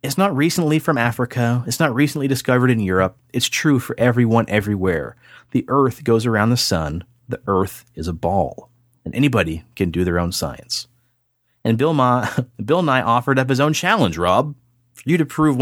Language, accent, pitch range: English, American, 100-130 Hz